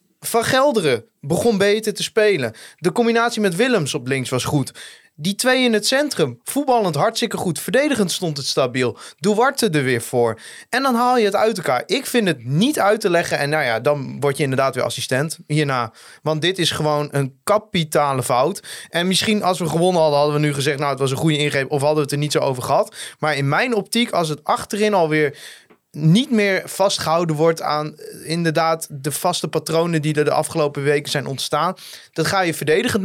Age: 20-39